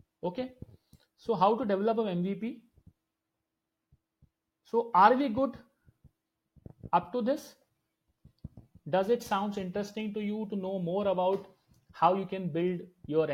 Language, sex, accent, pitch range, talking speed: Hindi, male, native, 155-215 Hz, 130 wpm